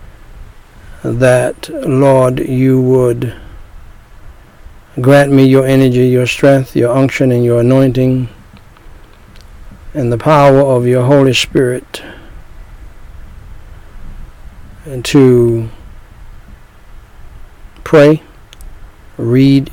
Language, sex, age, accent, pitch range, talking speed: English, male, 60-79, American, 110-140 Hz, 80 wpm